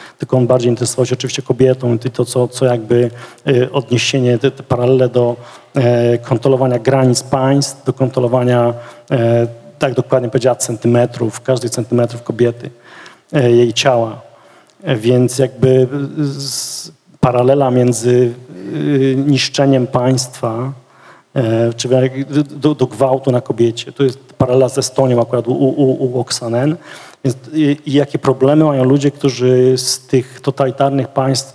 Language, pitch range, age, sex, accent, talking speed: Polish, 120-135 Hz, 40-59, male, native, 120 wpm